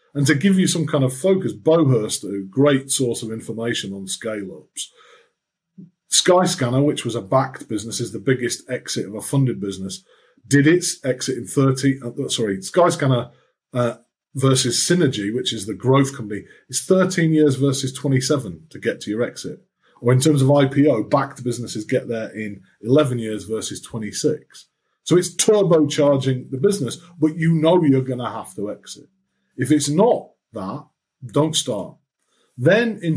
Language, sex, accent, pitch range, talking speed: English, male, British, 115-155 Hz, 165 wpm